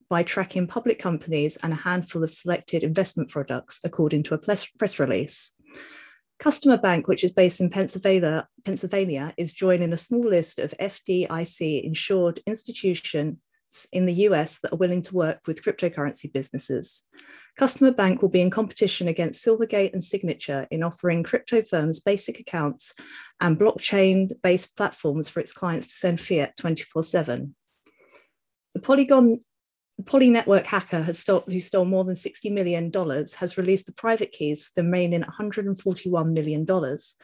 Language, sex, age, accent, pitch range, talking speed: English, female, 30-49, British, 165-200 Hz, 145 wpm